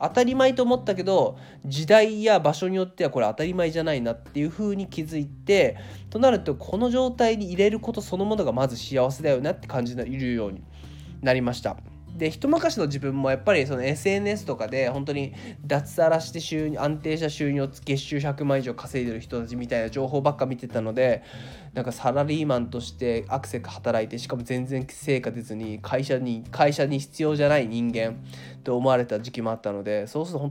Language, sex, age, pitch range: Japanese, male, 20-39, 120-170 Hz